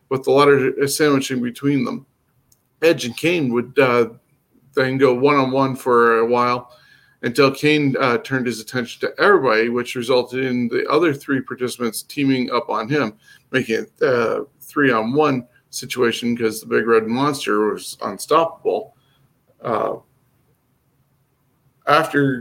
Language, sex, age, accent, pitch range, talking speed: English, male, 50-69, American, 125-145 Hz, 145 wpm